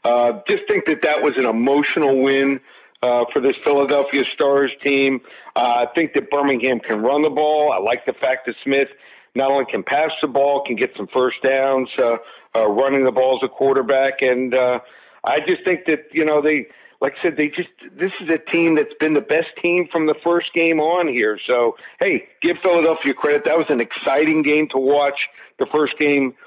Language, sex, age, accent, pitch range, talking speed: English, male, 50-69, American, 130-155 Hz, 210 wpm